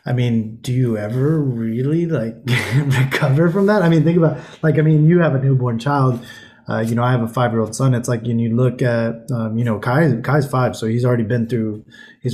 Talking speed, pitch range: 235 wpm, 115-130 Hz